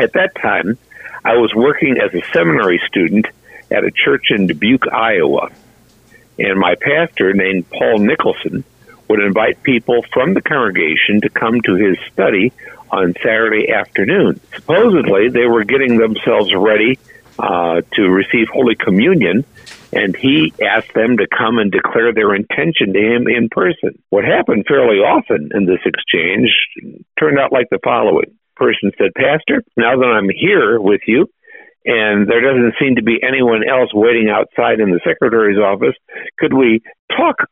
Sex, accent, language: male, American, English